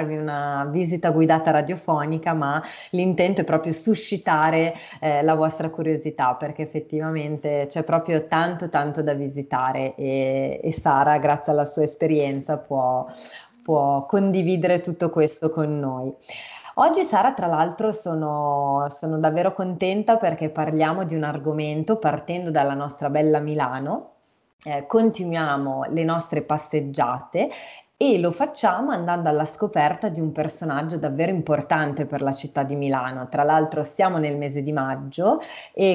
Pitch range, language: 145-165 Hz, Italian